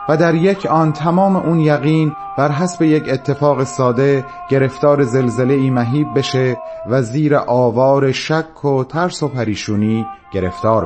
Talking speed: 145 wpm